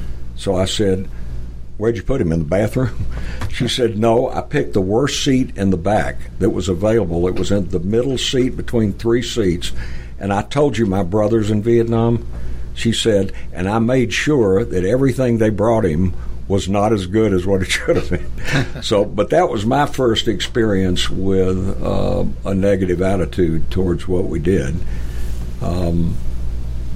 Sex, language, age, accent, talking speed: male, English, 60-79, American, 175 wpm